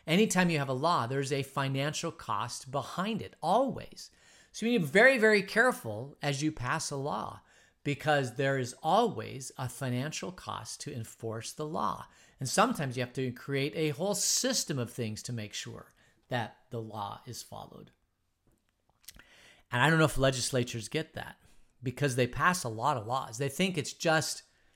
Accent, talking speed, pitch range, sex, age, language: American, 180 wpm, 115-145 Hz, male, 40-59, English